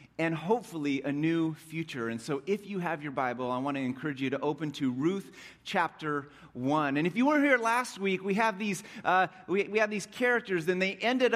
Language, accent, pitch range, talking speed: English, American, 120-195 Hz, 220 wpm